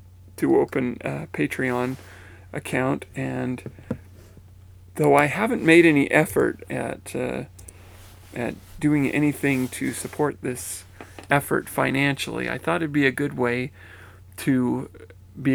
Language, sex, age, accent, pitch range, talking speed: English, male, 40-59, American, 95-130 Hz, 120 wpm